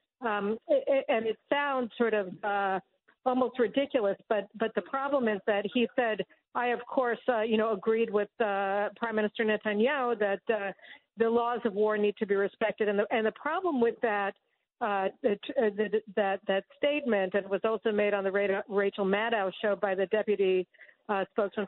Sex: female